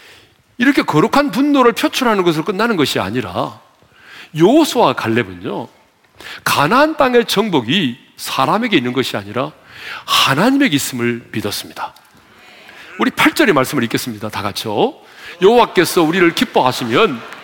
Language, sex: Korean, male